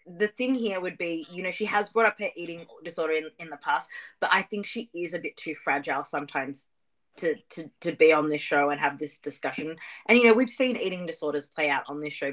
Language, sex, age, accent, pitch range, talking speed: English, female, 20-39, Australian, 150-205 Hz, 250 wpm